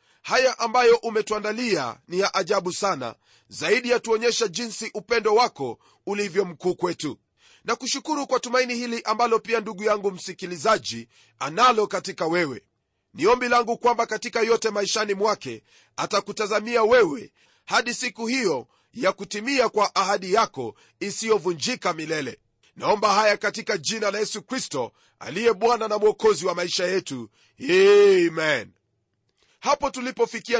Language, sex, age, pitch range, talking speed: Swahili, male, 40-59, 185-235 Hz, 125 wpm